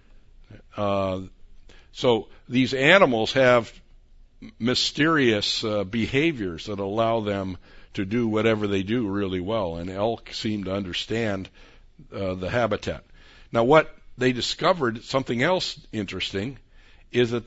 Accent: American